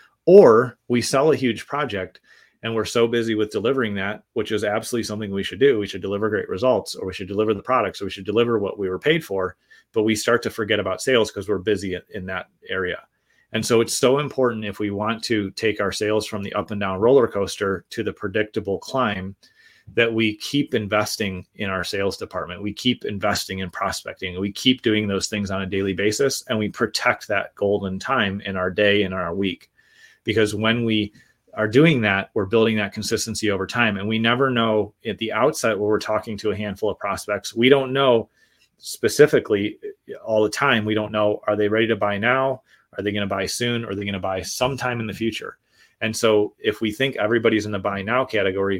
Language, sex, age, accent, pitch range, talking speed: English, male, 30-49, American, 100-115 Hz, 220 wpm